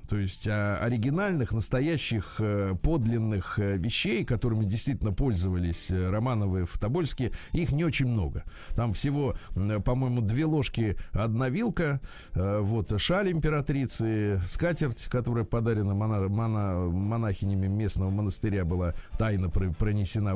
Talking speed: 105 wpm